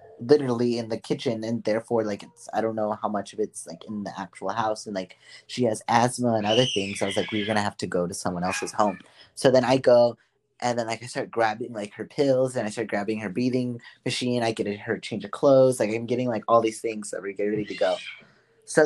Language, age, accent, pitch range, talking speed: English, 20-39, American, 100-125 Hz, 255 wpm